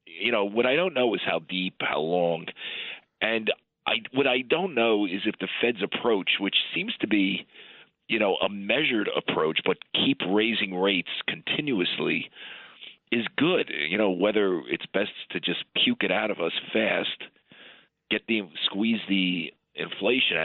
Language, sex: English, male